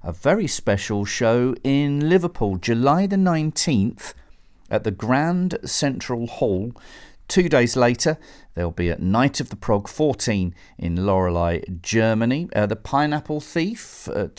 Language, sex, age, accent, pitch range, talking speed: English, male, 40-59, British, 95-140 Hz, 140 wpm